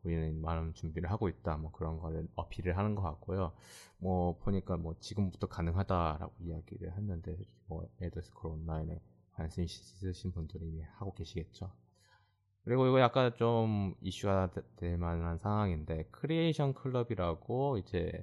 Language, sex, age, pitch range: Korean, male, 20-39, 85-100 Hz